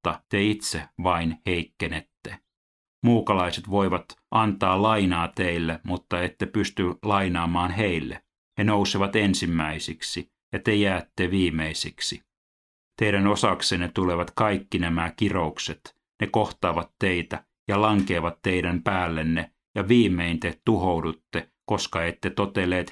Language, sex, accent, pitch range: Finnish, male, native, 85-100 Hz